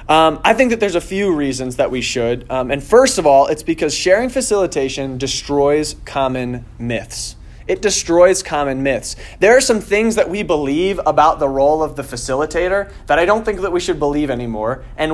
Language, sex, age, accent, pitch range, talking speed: English, male, 20-39, American, 130-180 Hz, 200 wpm